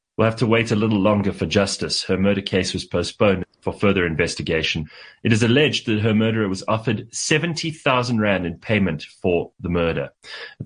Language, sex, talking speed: English, male, 180 wpm